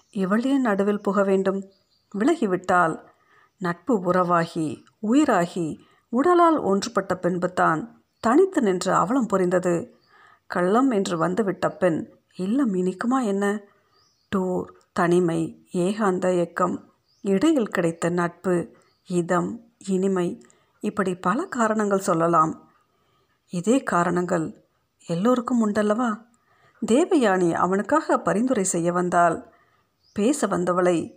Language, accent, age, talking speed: Tamil, native, 50-69, 85 wpm